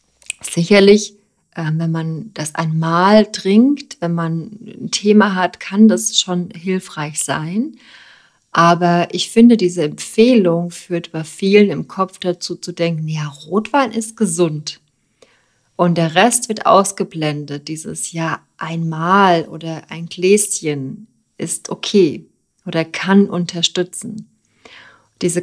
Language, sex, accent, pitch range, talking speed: German, female, German, 165-205 Hz, 120 wpm